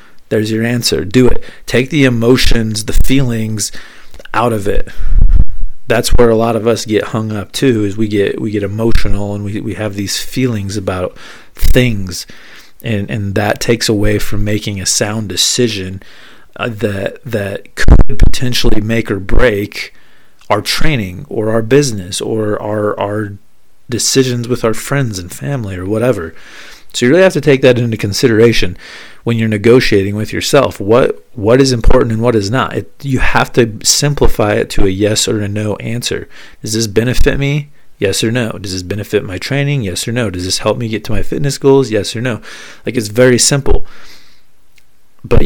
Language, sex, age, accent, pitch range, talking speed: English, male, 40-59, American, 105-125 Hz, 180 wpm